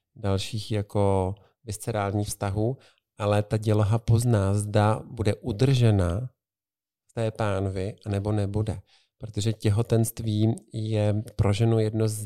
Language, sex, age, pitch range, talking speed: Czech, male, 40-59, 105-115 Hz, 110 wpm